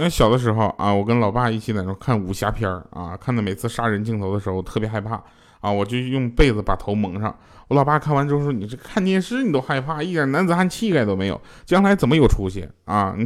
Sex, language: male, Chinese